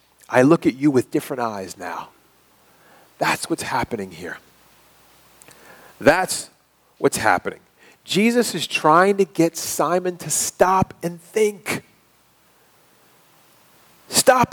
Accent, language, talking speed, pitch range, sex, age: American, English, 105 wpm, 140-205 Hz, male, 40-59